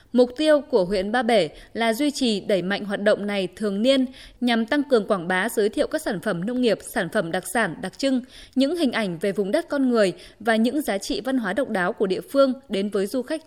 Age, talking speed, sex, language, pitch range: 20-39, 255 wpm, female, Vietnamese, 200-270 Hz